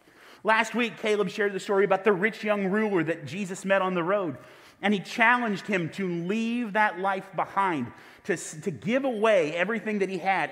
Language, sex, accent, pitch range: English, male, American, 140-210 Hz